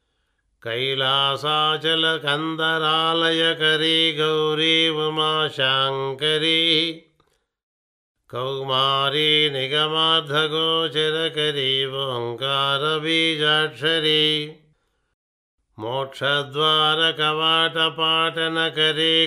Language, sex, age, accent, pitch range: Telugu, male, 50-69, native, 140-160 Hz